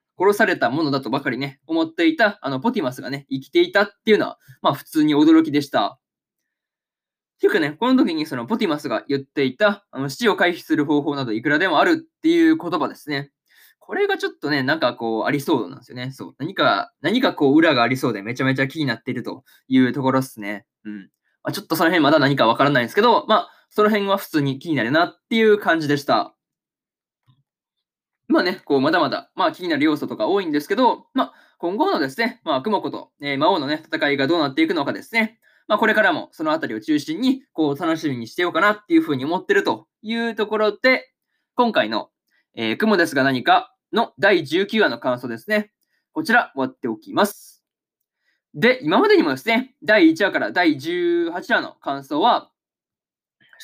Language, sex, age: Japanese, male, 20-39